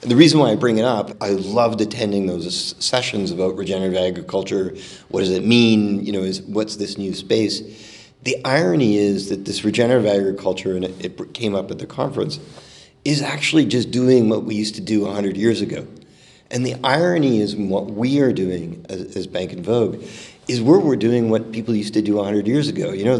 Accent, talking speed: American, 210 wpm